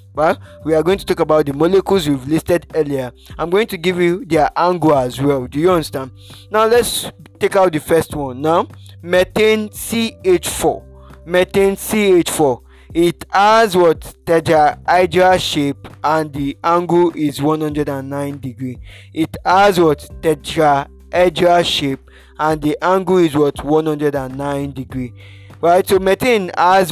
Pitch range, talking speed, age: 140-175 Hz, 140 wpm, 20-39